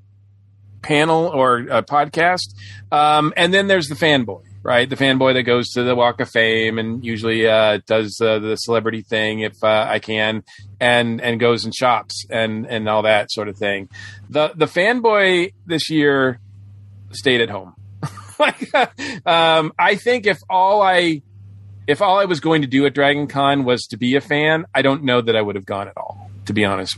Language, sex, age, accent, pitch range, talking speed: English, male, 40-59, American, 105-135 Hz, 195 wpm